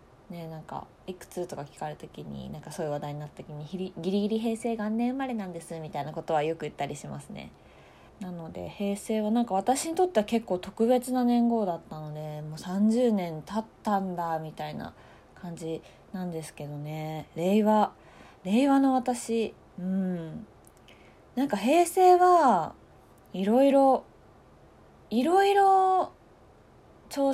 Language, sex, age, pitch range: Japanese, female, 20-39, 160-225 Hz